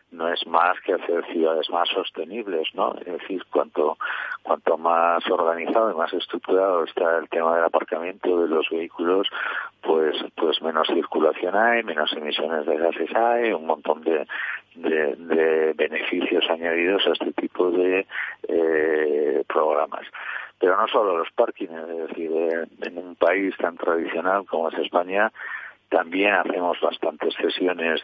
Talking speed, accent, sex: 145 wpm, Spanish, male